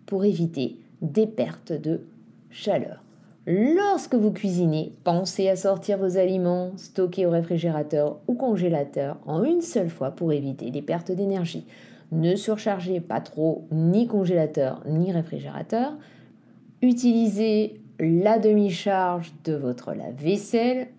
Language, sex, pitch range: French, female, 165-215 Hz